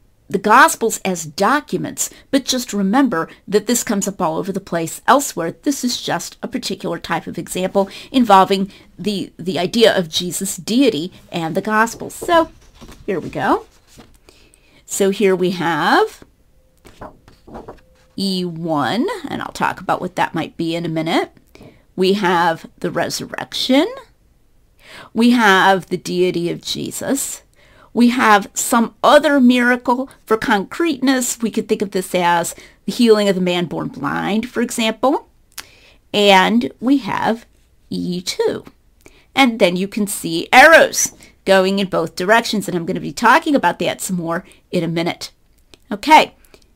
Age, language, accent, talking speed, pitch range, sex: 40-59, English, American, 145 wpm, 180-235 Hz, female